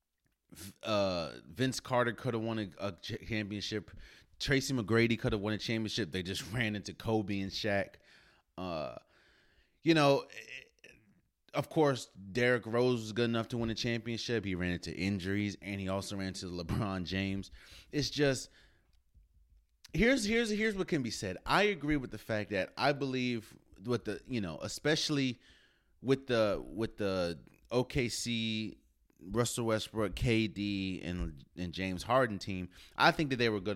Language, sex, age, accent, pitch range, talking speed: English, male, 30-49, American, 95-120 Hz, 160 wpm